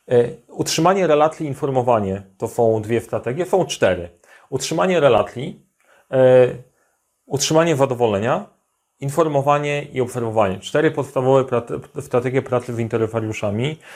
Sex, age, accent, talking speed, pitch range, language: male, 30-49, native, 100 wpm, 120-145 Hz, Polish